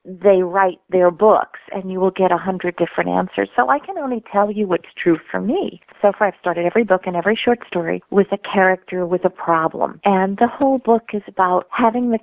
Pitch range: 175-215 Hz